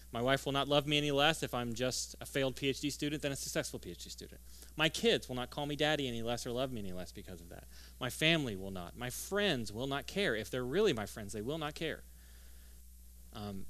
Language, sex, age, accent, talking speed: English, male, 30-49, American, 245 wpm